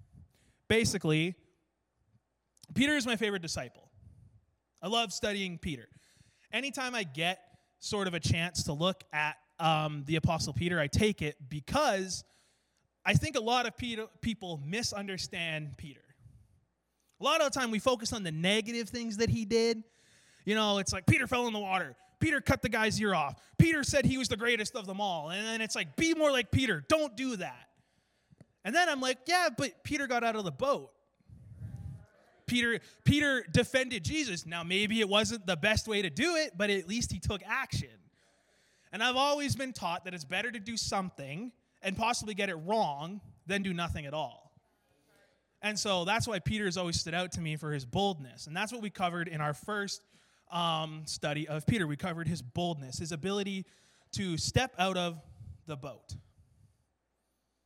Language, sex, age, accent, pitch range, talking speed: English, male, 20-39, American, 155-230 Hz, 185 wpm